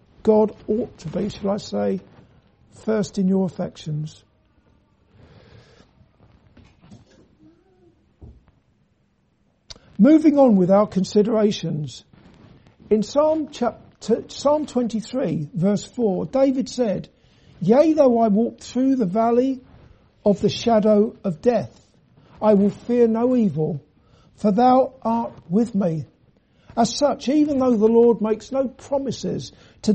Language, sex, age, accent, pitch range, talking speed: English, male, 50-69, British, 190-240 Hz, 110 wpm